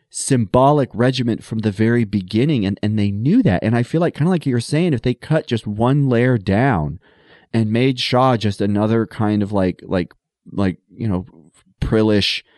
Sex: male